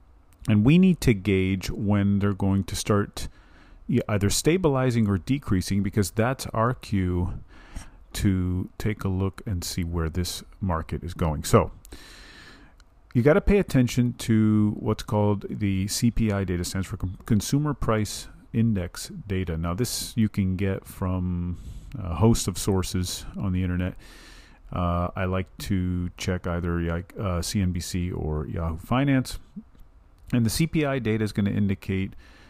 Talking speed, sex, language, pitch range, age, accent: 145 wpm, male, English, 90-110 Hz, 40-59, American